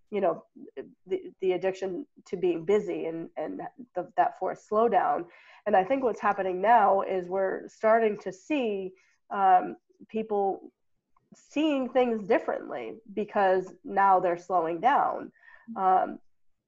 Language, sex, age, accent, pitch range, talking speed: English, female, 20-39, American, 185-230 Hz, 130 wpm